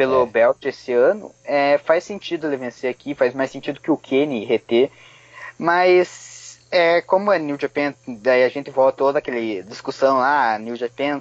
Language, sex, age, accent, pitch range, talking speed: Portuguese, male, 20-39, Brazilian, 120-155 Hz, 185 wpm